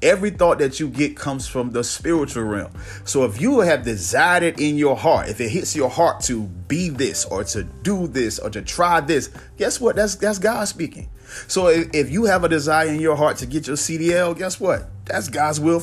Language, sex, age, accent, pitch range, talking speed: English, male, 30-49, American, 120-170 Hz, 220 wpm